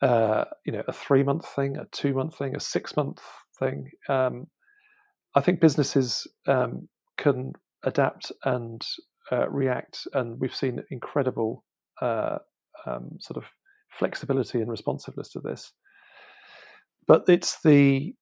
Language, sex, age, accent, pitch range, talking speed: English, male, 50-69, British, 125-150 Hz, 125 wpm